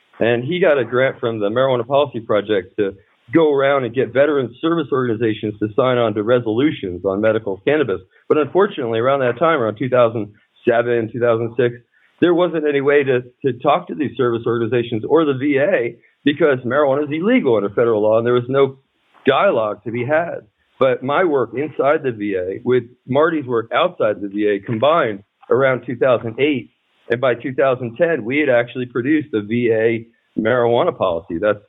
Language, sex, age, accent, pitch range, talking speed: English, male, 40-59, American, 110-145 Hz, 170 wpm